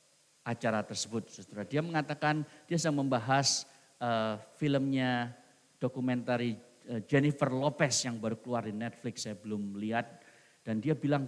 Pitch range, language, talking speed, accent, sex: 120-190 Hz, English, 120 wpm, Indonesian, male